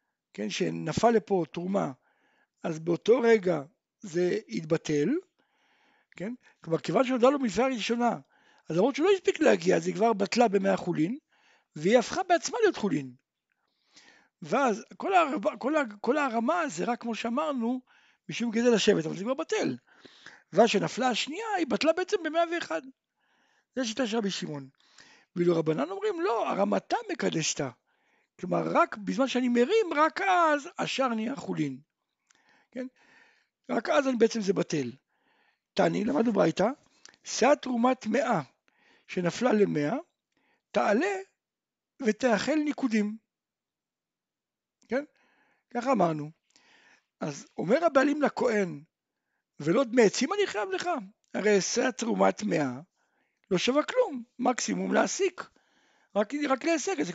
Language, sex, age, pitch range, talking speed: Hebrew, male, 60-79, 200-300 Hz, 100 wpm